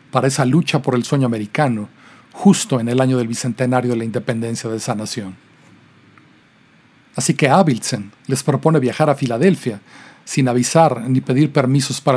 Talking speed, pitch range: 165 wpm, 125-145 Hz